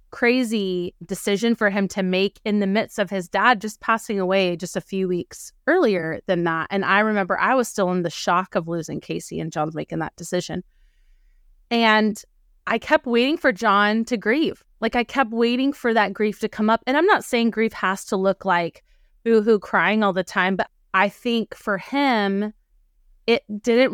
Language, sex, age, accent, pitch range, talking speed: English, female, 20-39, American, 185-225 Hz, 195 wpm